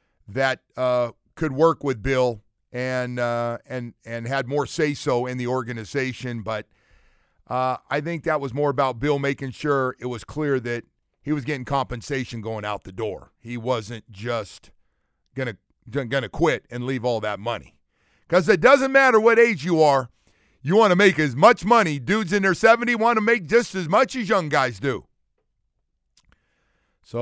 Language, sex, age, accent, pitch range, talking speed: English, male, 50-69, American, 115-170 Hz, 180 wpm